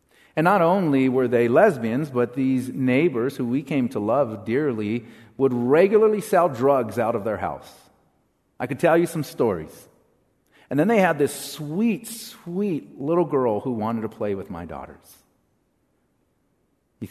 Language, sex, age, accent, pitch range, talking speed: English, male, 50-69, American, 105-140 Hz, 160 wpm